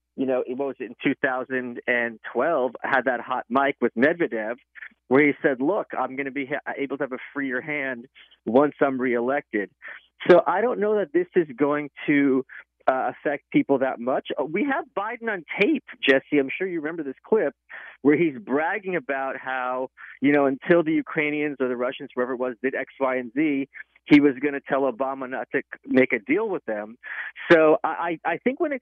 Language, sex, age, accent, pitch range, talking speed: English, male, 40-59, American, 125-160 Hz, 200 wpm